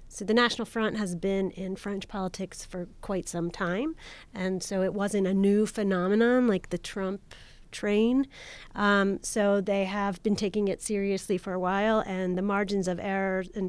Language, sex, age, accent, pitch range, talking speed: English, female, 30-49, American, 180-210 Hz, 180 wpm